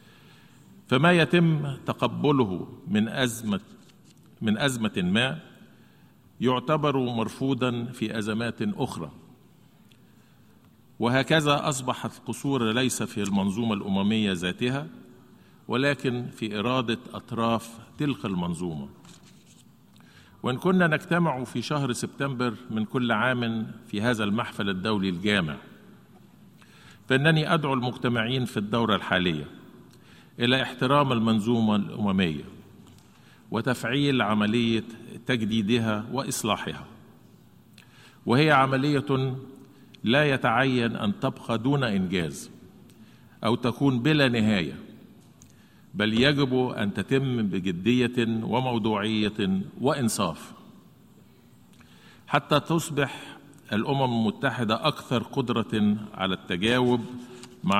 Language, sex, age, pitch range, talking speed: Arabic, male, 50-69, 110-135 Hz, 85 wpm